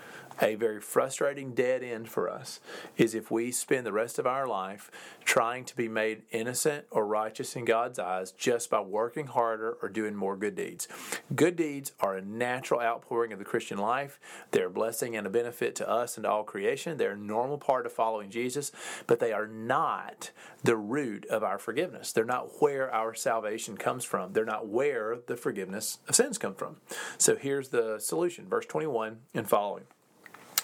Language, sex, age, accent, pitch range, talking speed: English, male, 40-59, American, 110-145 Hz, 190 wpm